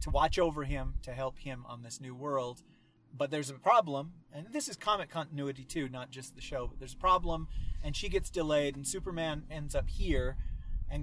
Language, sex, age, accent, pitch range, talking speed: English, male, 30-49, American, 115-150 Hz, 210 wpm